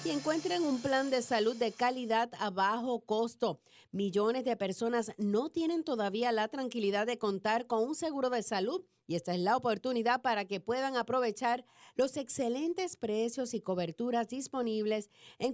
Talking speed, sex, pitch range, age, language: 160 wpm, female, 205-255 Hz, 40-59, English